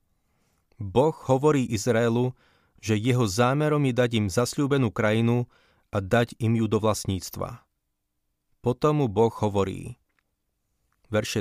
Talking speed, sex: 110 wpm, male